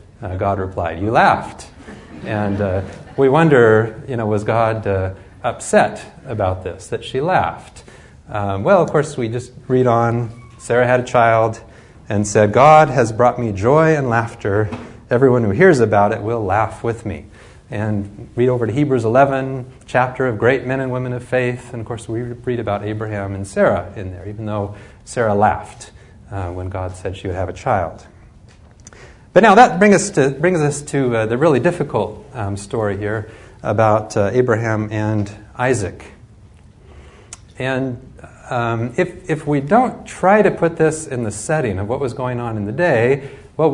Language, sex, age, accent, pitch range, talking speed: English, male, 30-49, American, 105-130 Hz, 180 wpm